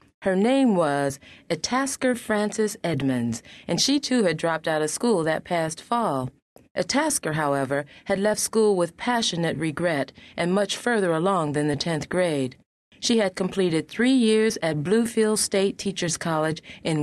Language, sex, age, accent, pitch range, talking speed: English, female, 30-49, American, 160-205 Hz, 155 wpm